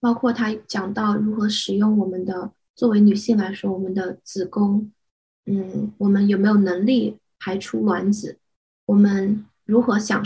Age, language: 20-39, Chinese